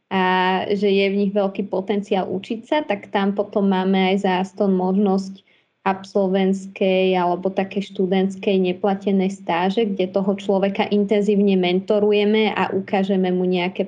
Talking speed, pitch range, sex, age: 135 wpm, 195-210 Hz, female, 20-39